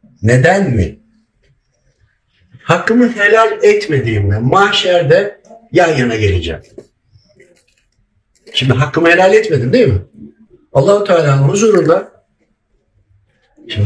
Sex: male